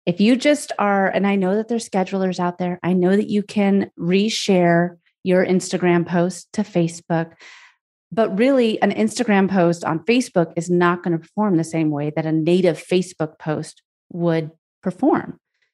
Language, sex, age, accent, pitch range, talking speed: English, female, 30-49, American, 165-205 Hz, 170 wpm